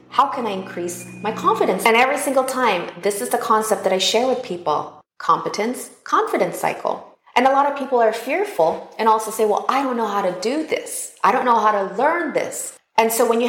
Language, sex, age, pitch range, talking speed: English, female, 30-49, 180-255 Hz, 225 wpm